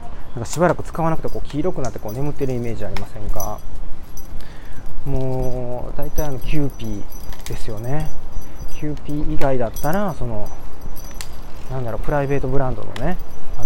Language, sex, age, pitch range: Japanese, male, 20-39, 105-150 Hz